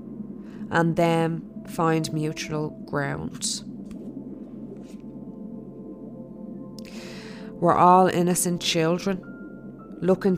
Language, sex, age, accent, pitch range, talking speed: English, female, 20-39, Irish, 170-210 Hz, 60 wpm